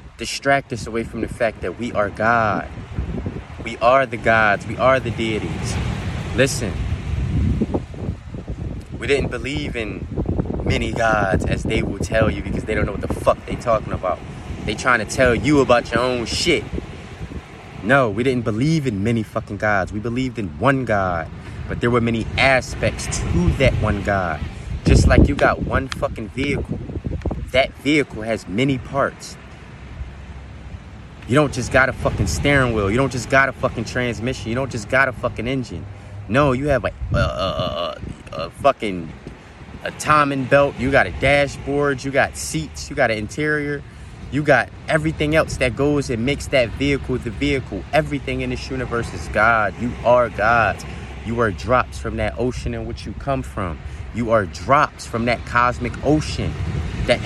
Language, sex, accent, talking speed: English, male, American, 175 wpm